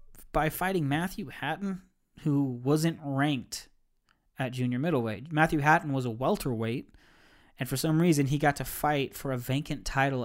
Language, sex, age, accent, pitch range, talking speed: English, male, 20-39, American, 125-150 Hz, 160 wpm